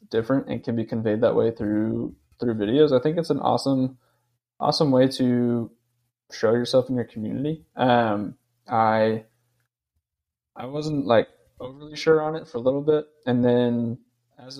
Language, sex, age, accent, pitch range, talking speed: English, male, 10-29, American, 115-135 Hz, 160 wpm